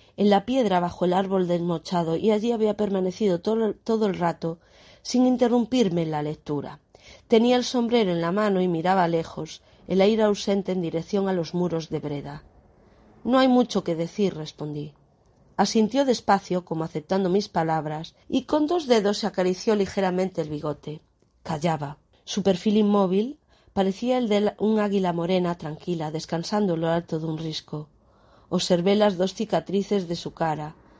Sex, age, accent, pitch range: female, 40-59, Spanish, 165-210 Hz